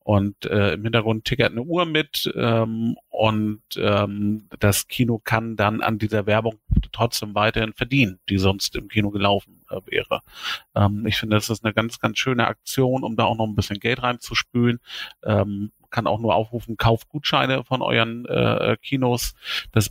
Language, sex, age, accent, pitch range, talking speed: German, male, 40-59, German, 105-125 Hz, 175 wpm